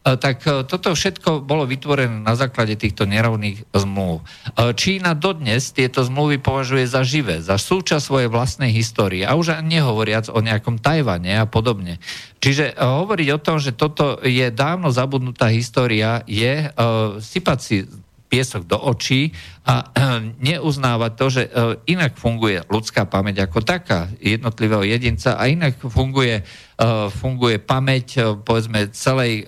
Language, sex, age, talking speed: Slovak, male, 50-69, 140 wpm